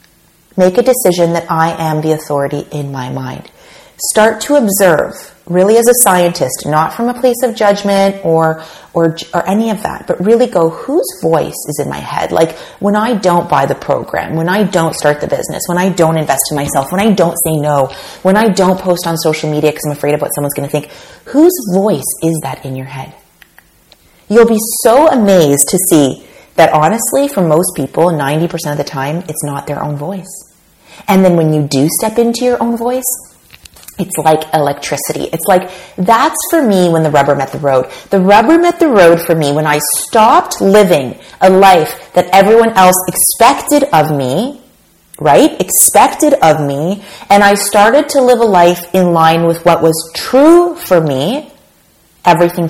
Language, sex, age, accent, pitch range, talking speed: English, female, 30-49, American, 150-200 Hz, 190 wpm